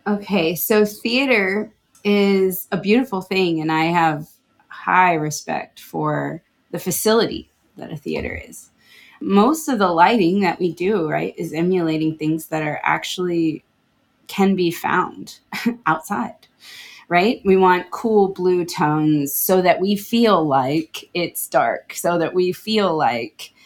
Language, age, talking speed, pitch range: English, 20-39, 140 wpm, 150-180 Hz